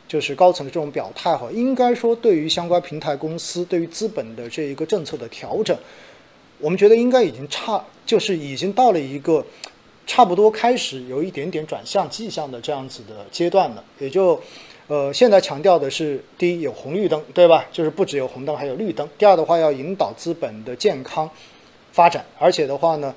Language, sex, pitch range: Chinese, male, 140-185 Hz